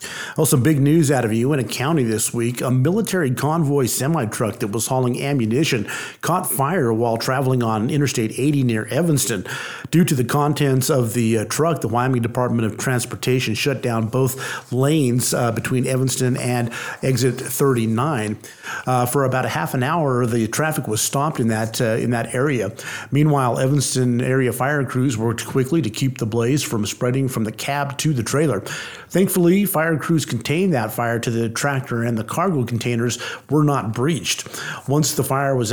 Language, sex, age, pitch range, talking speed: English, male, 50-69, 115-140 Hz, 180 wpm